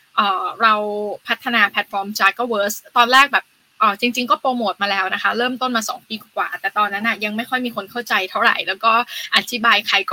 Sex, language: female, Thai